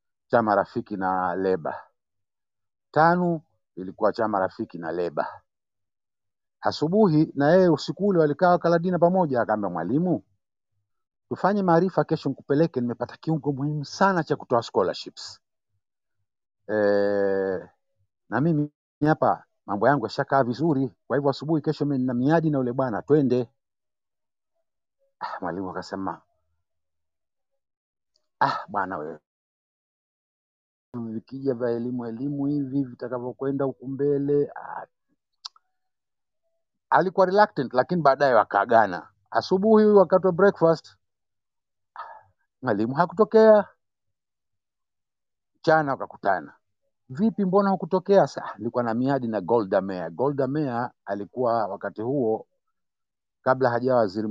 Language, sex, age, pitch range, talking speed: Swahili, male, 50-69, 100-160 Hz, 100 wpm